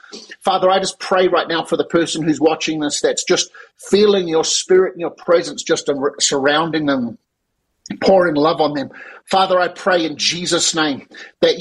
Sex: male